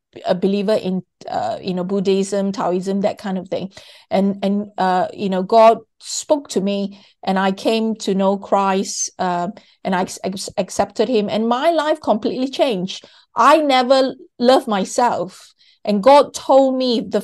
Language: English